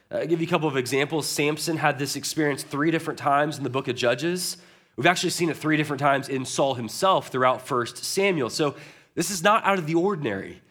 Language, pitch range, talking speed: Russian, 140-175 Hz, 225 wpm